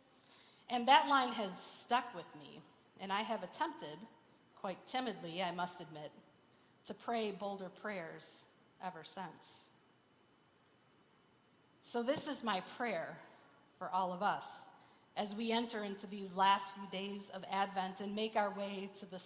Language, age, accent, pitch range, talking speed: English, 40-59, American, 180-215 Hz, 145 wpm